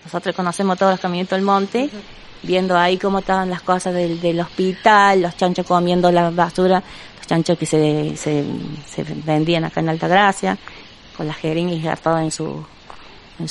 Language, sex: Spanish, female